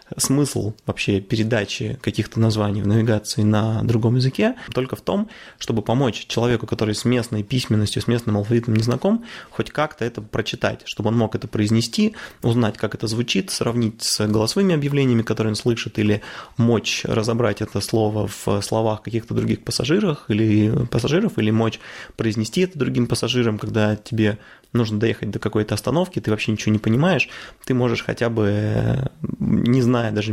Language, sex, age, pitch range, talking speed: Russian, male, 20-39, 105-125 Hz, 160 wpm